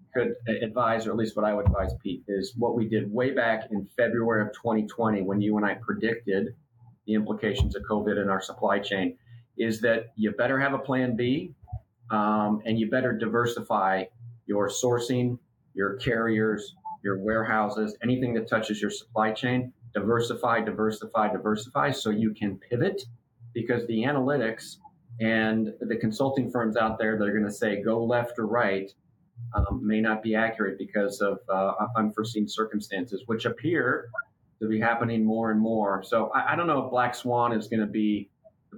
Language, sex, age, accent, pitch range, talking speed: English, male, 40-59, American, 105-120 Hz, 175 wpm